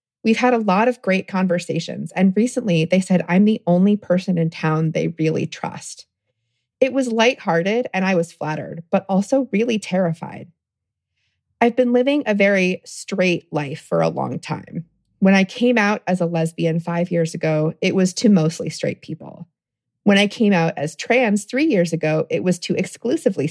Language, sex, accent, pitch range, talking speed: English, female, American, 160-195 Hz, 180 wpm